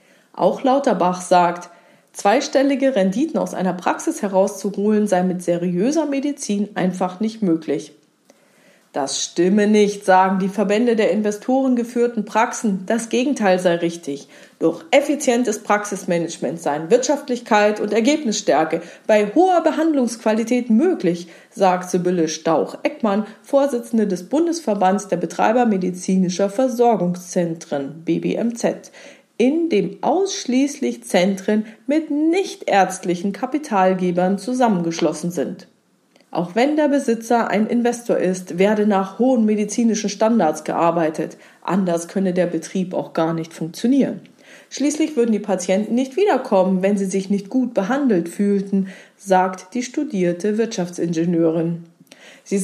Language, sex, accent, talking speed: German, female, German, 115 wpm